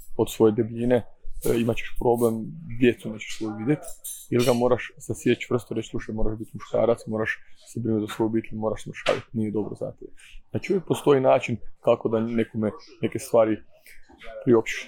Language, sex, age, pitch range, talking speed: Croatian, male, 20-39, 110-120 Hz, 160 wpm